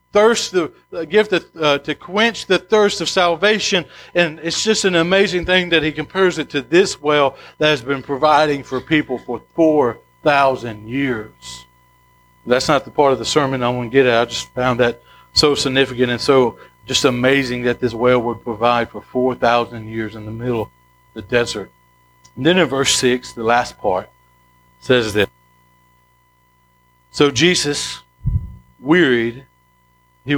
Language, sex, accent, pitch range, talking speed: English, male, American, 110-145 Hz, 170 wpm